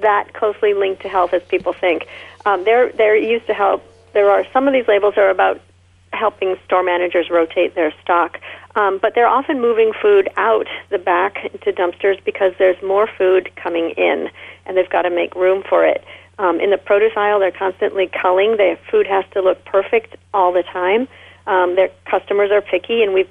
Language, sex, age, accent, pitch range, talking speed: English, female, 40-59, American, 180-220 Hz, 200 wpm